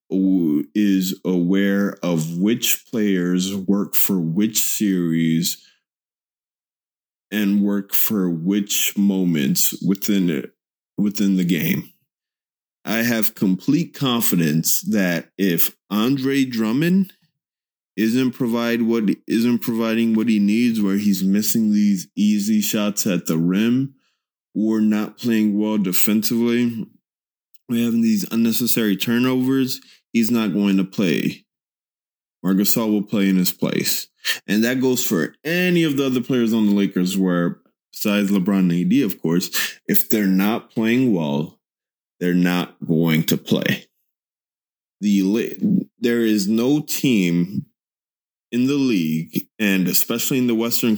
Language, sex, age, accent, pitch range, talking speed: English, male, 20-39, American, 95-120 Hz, 125 wpm